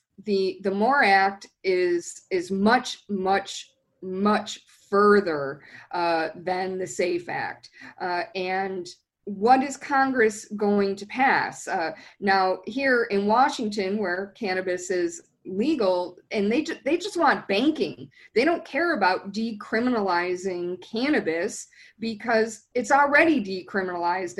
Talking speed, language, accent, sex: 120 wpm, English, American, female